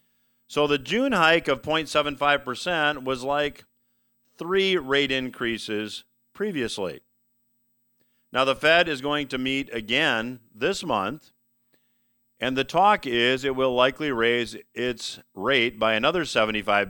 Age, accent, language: 50-69, American, English